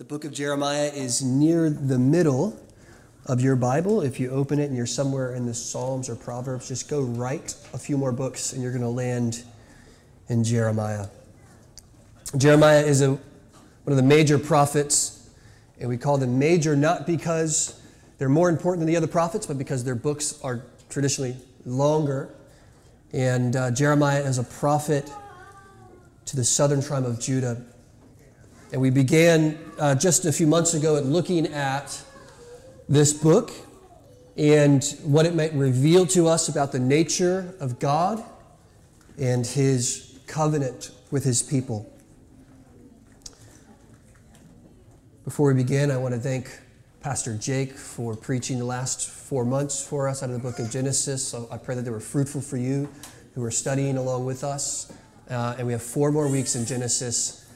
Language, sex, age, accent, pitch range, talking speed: English, male, 30-49, American, 125-145 Hz, 165 wpm